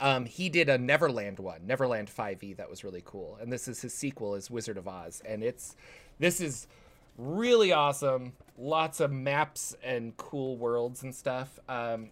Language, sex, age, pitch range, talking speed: English, male, 30-49, 120-150 Hz, 180 wpm